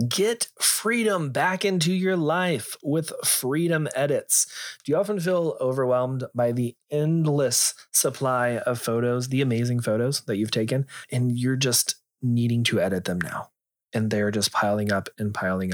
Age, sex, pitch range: 30-49, male, 115-155 Hz